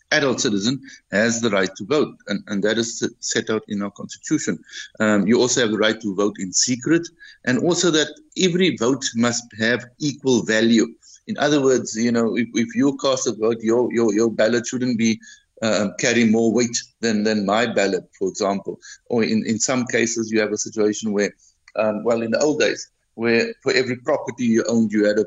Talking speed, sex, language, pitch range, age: 210 wpm, male, English, 110-130 Hz, 50-69